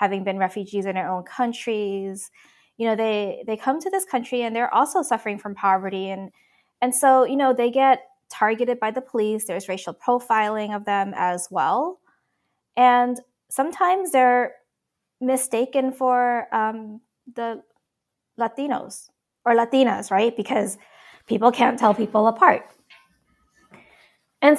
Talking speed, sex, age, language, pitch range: 140 wpm, female, 20-39, English, 210-255 Hz